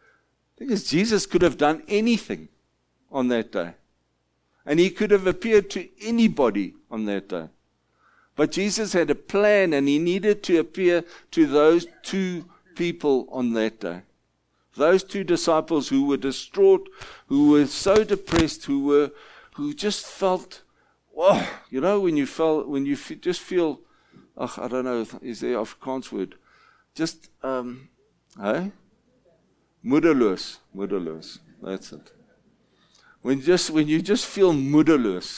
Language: English